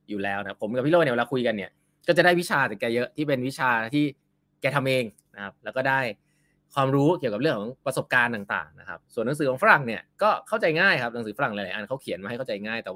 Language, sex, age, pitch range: Thai, male, 20-39, 110-155 Hz